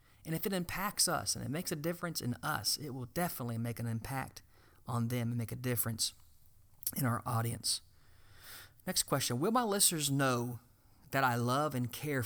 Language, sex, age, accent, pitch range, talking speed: English, male, 40-59, American, 110-170 Hz, 185 wpm